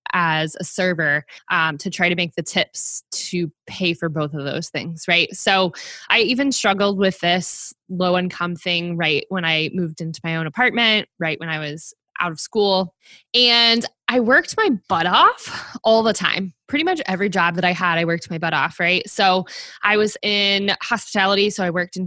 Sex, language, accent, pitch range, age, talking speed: female, English, American, 170-210 Hz, 20-39, 195 wpm